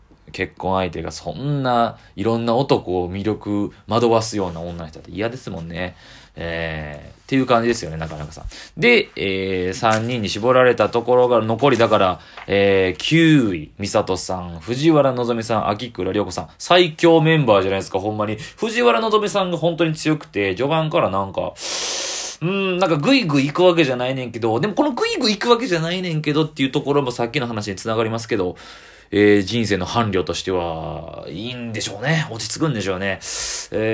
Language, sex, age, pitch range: Japanese, male, 20-39, 90-145 Hz